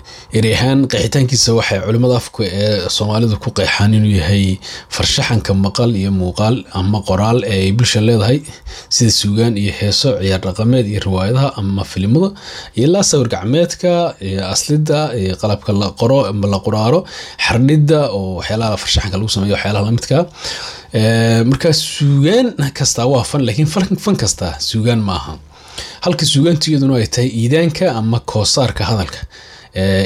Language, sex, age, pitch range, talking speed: English, male, 30-49, 100-130 Hz, 80 wpm